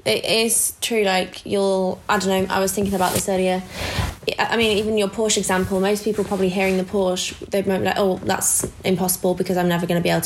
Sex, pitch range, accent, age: female, 175-195 Hz, British, 20-39